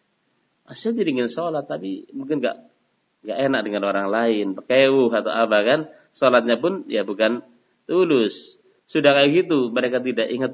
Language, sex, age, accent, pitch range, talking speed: Indonesian, male, 30-49, native, 110-145 Hz, 150 wpm